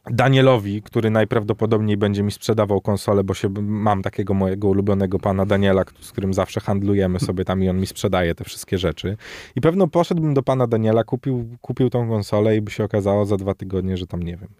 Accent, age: native, 20-39